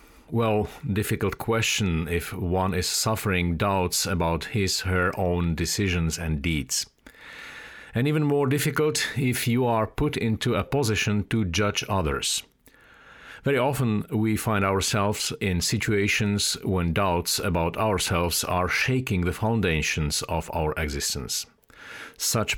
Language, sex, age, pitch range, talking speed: English, male, 50-69, 85-110 Hz, 130 wpm